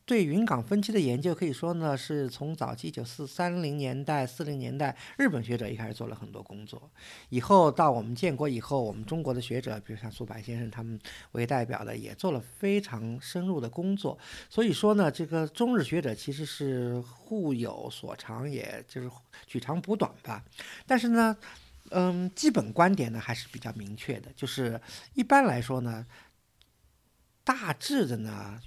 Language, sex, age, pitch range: Chinese, male, 50-69, 115-170 Hz